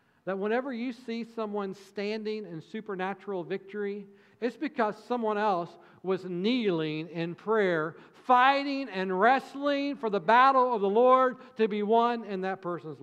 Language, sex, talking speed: English, male, 145 wpm